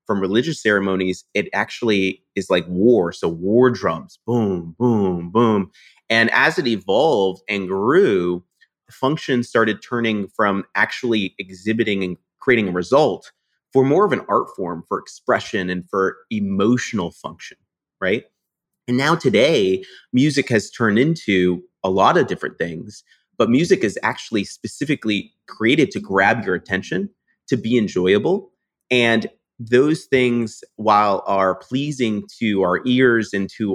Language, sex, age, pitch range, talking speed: English, male, 30-49, 95-125 Hz, 140 wpm